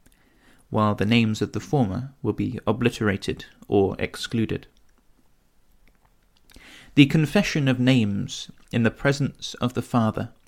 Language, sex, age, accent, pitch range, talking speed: English, male, 30-49, British, 110-130 Hz, 120 wpm